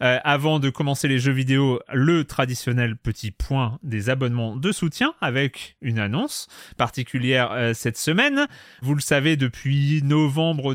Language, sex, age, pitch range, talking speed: French, male, 30-49, 120-155 Hz, 150 wpm